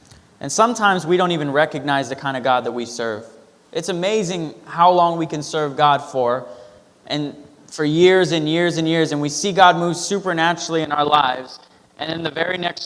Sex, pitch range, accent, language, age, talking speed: male, 150-185 Hz, American, English, 20-39, 200 wpm